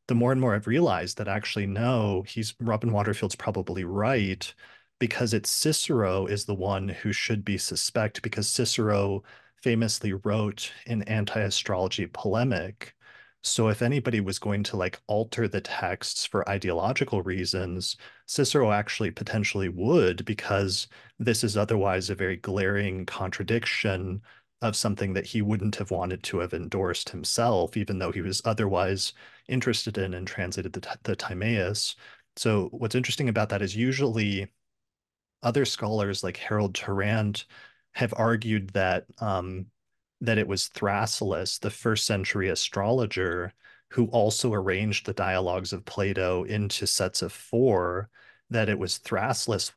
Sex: male